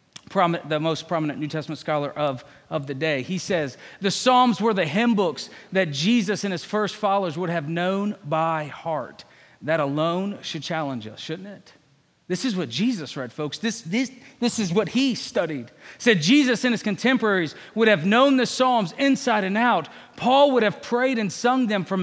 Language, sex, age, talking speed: English, male, 40-59, 190 wpm